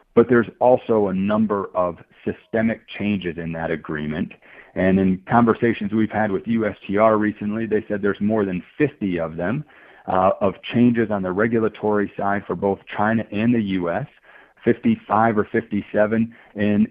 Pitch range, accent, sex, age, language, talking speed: 100-120 Hz, American, male, 40-59, English, 155 wpm